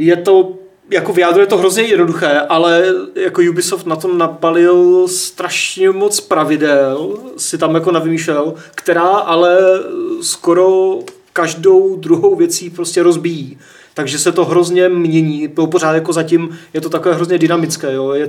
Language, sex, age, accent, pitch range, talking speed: Czech, male, 30-49, native, 150-175 Hz, 150 wpm